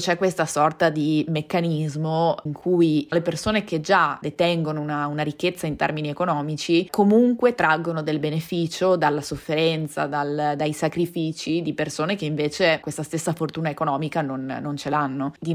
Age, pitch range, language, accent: 20-39, 150-170 Hz, Italian, native